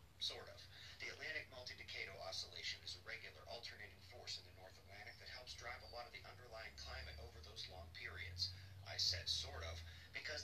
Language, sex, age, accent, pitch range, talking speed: English, male, 40-59, American, 90-110 Hz, 190 wpm